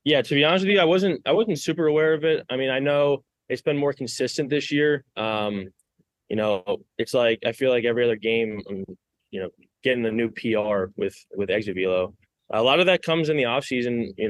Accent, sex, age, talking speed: American, male, 20-39, 225 wpm